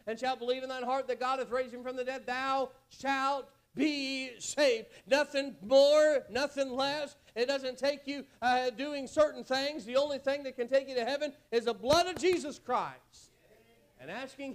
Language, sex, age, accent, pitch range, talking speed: English, male, 40-59, American, 235-275 Hz, 195 wpm